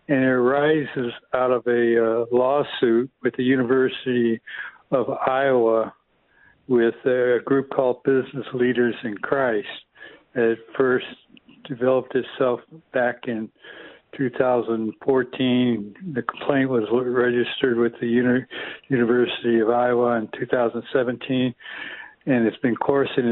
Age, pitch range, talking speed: 60-79, 115-130 Hz, 115 wpm